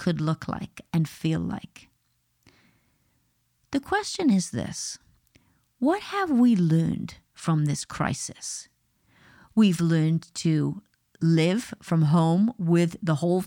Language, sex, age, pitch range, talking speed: English, female, 40-59, 165-210 Hz, 115 wpm